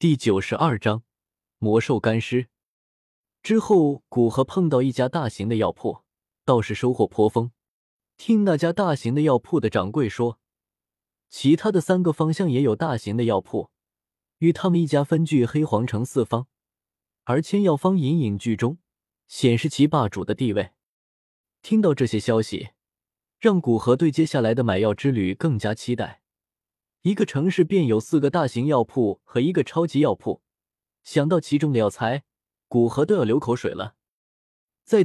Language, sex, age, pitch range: Chinese, male, 20-39, 115-165 Hz